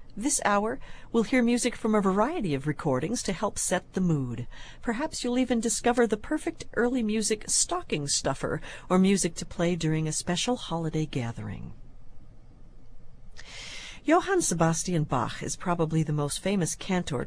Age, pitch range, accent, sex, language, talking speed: 50-69, 150-220 Hz, American, female, English, 150 wpm